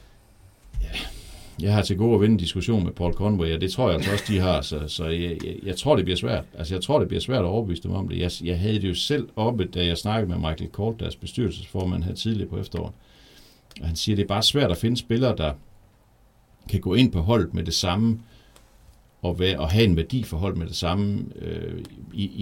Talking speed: 235 wpm